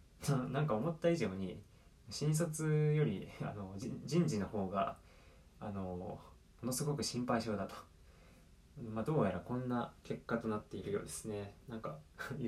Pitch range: 80-125 Hz